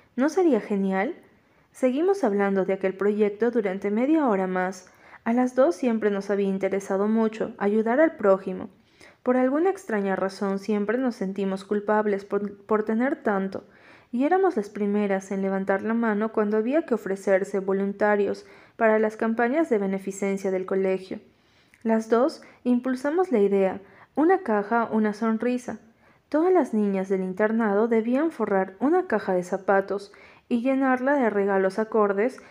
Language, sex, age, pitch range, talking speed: Spanish, female, 30-49, 200-245 Hz, 150 wpm